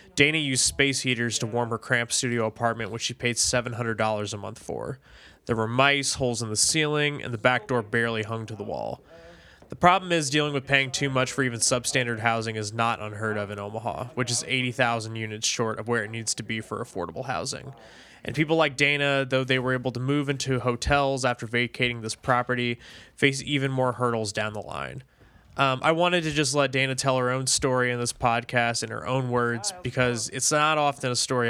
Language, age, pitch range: English, 20-39, 115-130 Hz